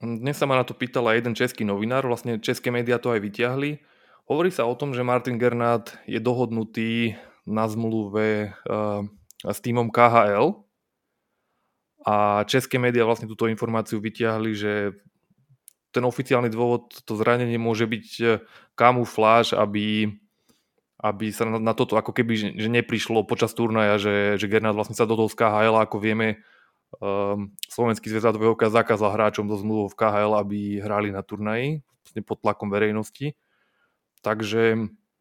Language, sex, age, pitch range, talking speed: Slovak, male, 20-39, 110-120 Hz, 145 wpm